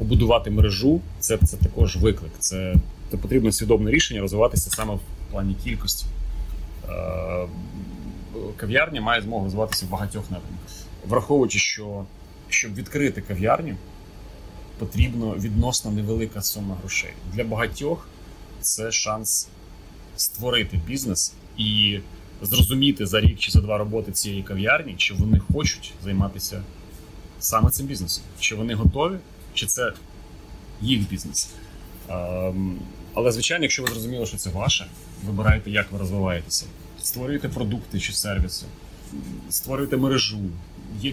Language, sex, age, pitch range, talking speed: Ukrainian, male, 30-49, 90-110 Hz, 125 wpm